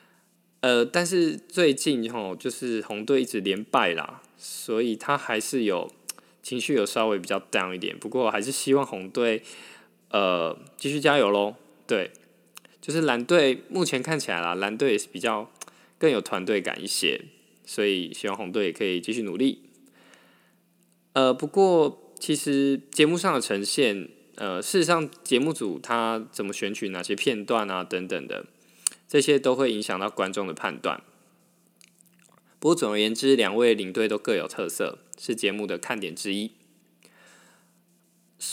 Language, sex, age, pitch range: Chinese, male, 20-39, 110-160 Hz